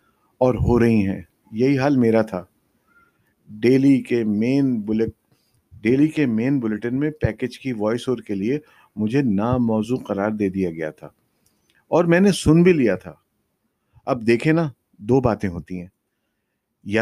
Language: Urdu